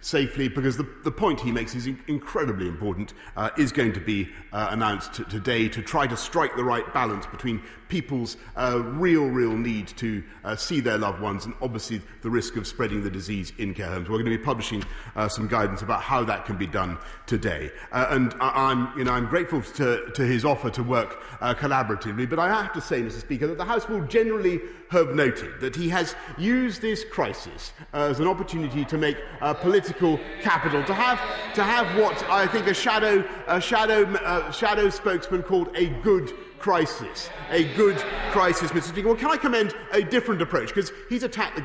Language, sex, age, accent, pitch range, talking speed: English, male, 40-59, British, 115-185 Hz, 205 wpm